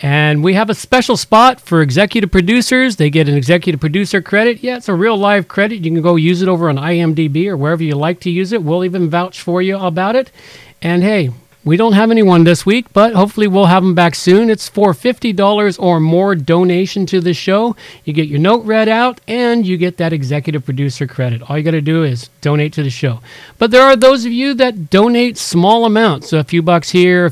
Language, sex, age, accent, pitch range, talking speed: English, male, 50-69, American, 145-195 Hz, 235 wpm